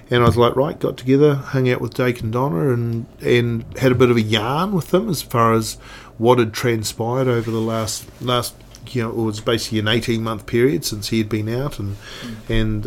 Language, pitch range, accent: English, 115-130 Hz, Australian